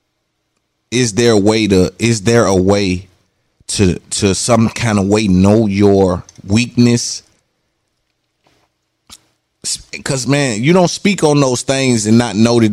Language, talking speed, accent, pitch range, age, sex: English, 140 wpm, American, 105-125 Hz, 30-49, male